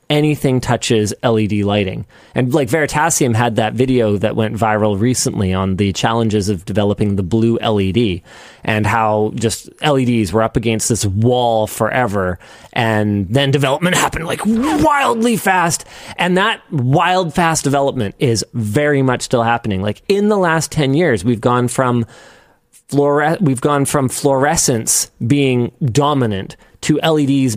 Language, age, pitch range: English, 30-49, 115-150 Hz